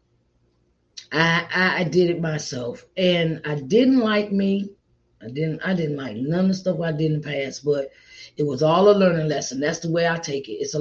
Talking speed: 215 wpm